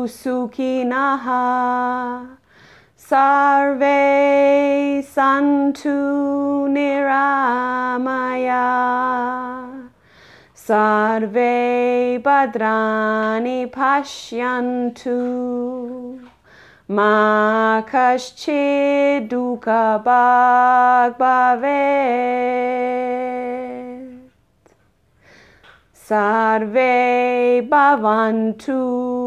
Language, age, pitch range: English, 30-49, 245-275 Hz